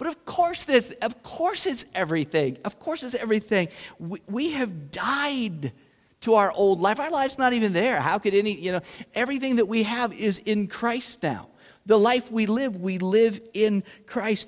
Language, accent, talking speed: English, American, 190 wpm